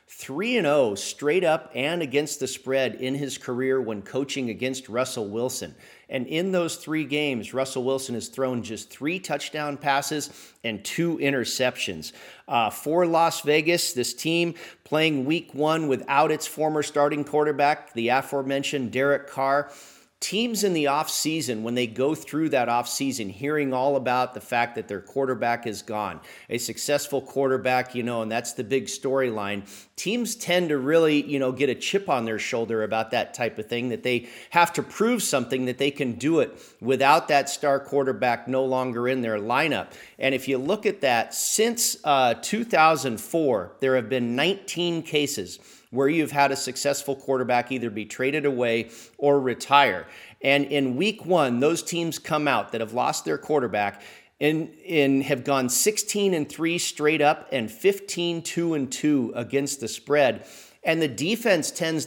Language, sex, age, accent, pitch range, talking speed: English, male, 40-59, American, 125-155 Hz, 170 wpm